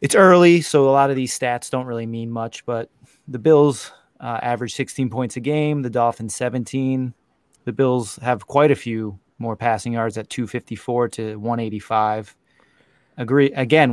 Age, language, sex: 30-49, English, male